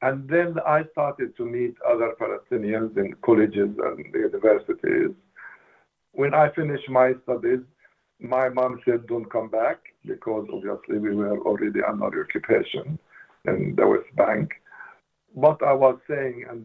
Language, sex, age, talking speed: English, male, 60-79, 140 wpm